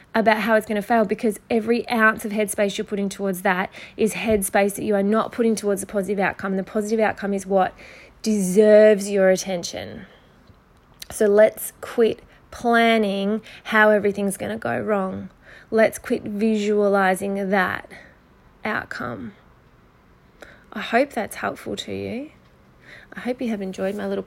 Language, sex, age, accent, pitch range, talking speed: English, female, 20-39, Australian, 200-225 Hz, 155 wpm